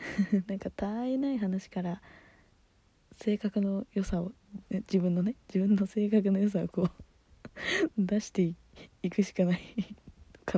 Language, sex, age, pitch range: Japanese, female, 20-39, 180-235 Hz